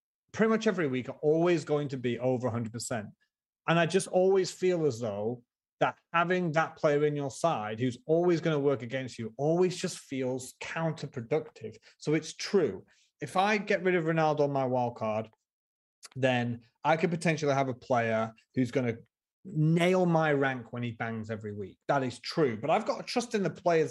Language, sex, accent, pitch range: English, male, British, 120-170 Hz